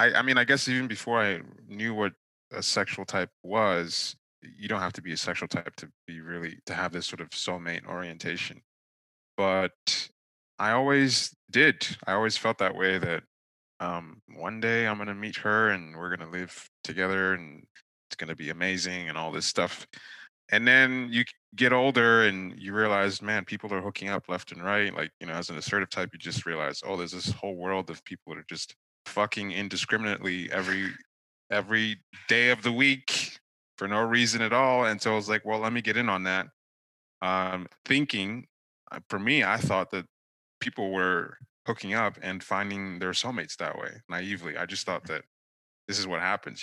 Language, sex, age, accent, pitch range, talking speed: English, male, 20-39, American, 85-110 Hz, 195 wpm